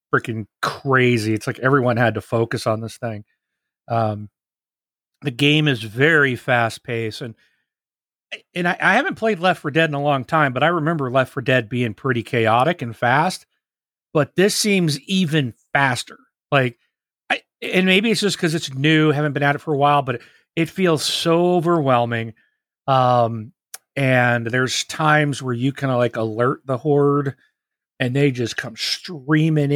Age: 40-59